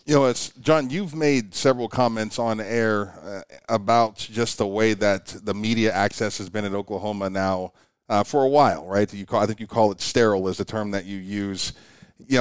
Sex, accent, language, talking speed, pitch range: male, American, English, 215 wpm, 105-135 Hz